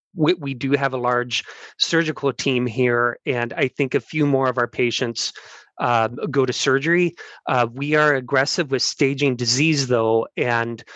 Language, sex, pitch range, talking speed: English, male, 120-140 Hz, 165 wpm